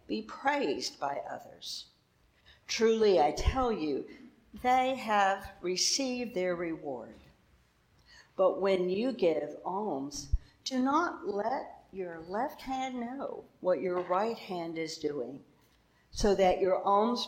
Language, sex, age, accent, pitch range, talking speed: English, female, 60-79, American, 165-245 Hz, 120 wpm